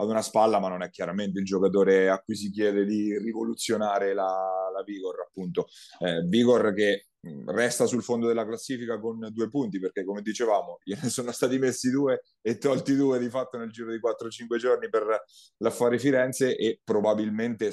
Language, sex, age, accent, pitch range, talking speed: Italian, male, 30-49, native, 100-115 Hz, 180 wpm